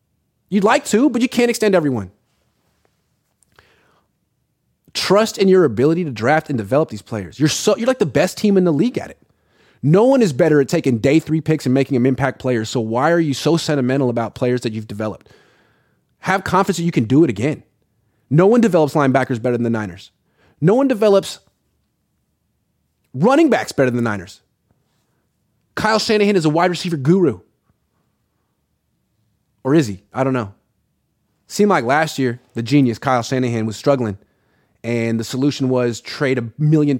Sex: male